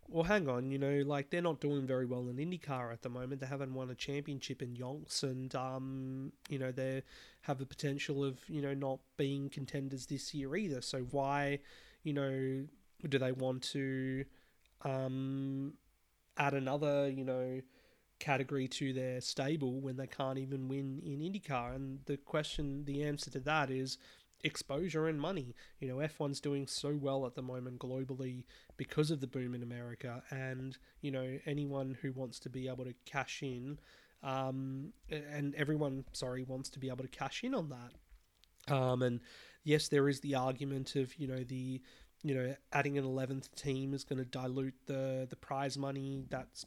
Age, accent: 20-39, Australian